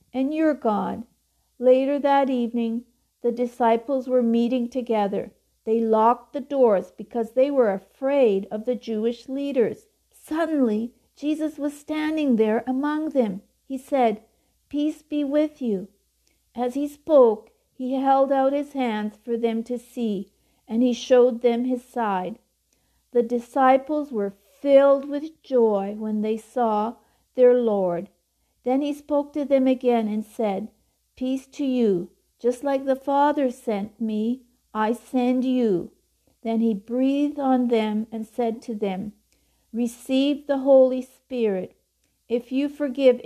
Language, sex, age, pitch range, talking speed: English, female, 60-79, 220-270 Hz, 140 wpm